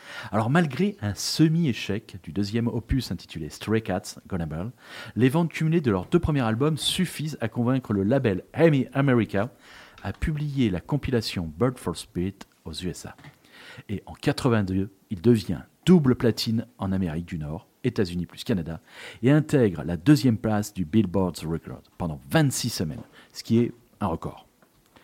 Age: 40-59